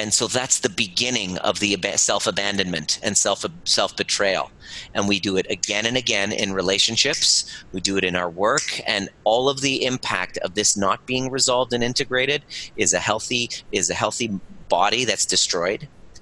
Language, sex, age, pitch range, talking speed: English, male, 30-49, 95-120 Hz, 180 wpm